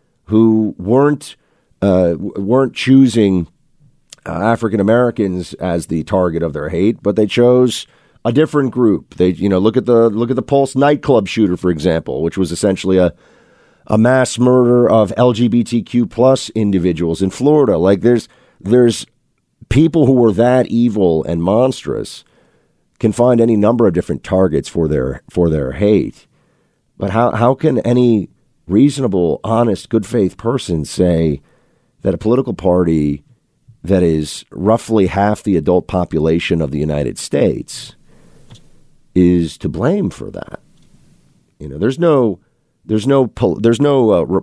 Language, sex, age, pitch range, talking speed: English, male, 50-69, 85-120 Hz, 145 wpm